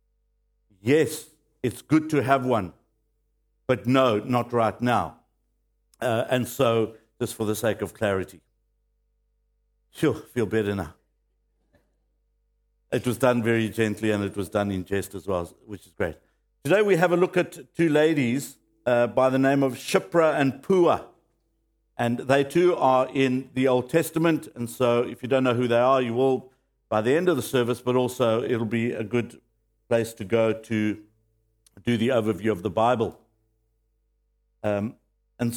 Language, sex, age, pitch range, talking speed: English, male, 60-79, 110-150 Hz, 170 wpm